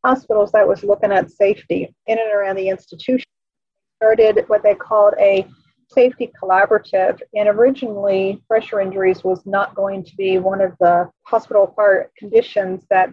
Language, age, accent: English, 40-59, American